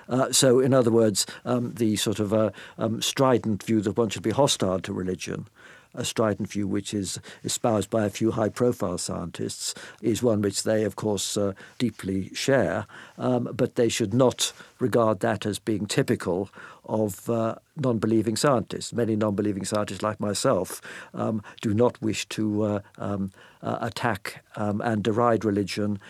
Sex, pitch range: male, 100-120 Hz